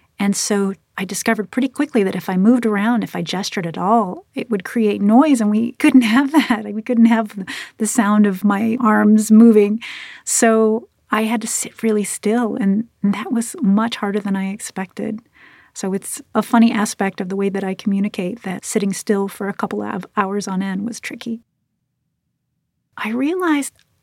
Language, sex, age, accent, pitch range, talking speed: English, female, 30-49, American, 190-230 Hz, 185 wpm